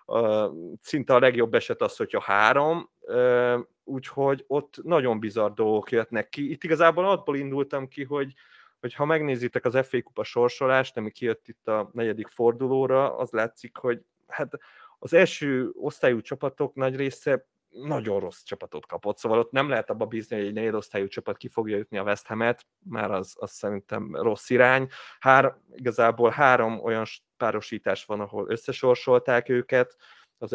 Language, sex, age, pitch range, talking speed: Hungarian, male, 30-49, 115-140 Hz, 160 wpm